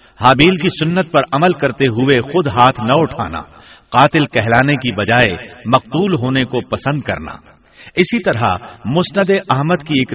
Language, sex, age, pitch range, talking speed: Urdu, male, 60-79, 115-155 Hz, 155 wpm